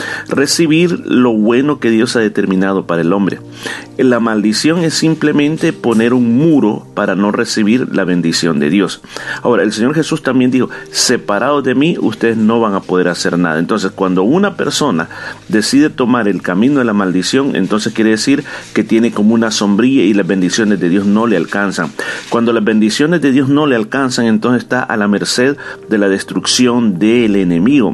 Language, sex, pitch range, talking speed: Spanish, male, 100-155 Hz, 185 wpm